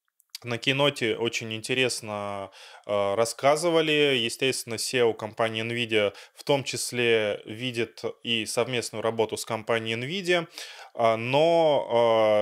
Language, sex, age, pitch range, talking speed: Russian, male, 20-39, 110-135 Hz, 110 wpm